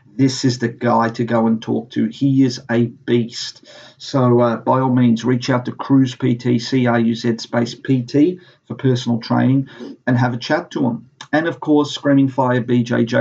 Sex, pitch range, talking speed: male, 115-130 Hz, 200 wpm